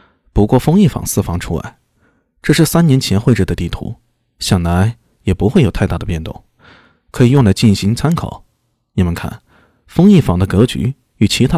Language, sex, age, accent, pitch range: Chinese, male, 20-39, native, 95-140 Hz